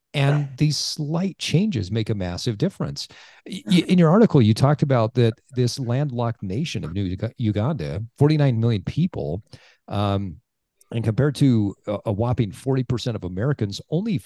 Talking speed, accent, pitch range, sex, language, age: 150 wpm, American, 100-135 Hz, male, English, 40-59